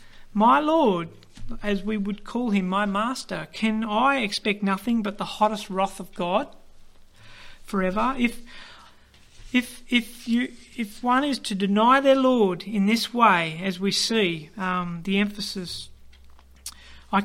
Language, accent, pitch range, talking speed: English, Australian, 190-225 Hz, 145 wpm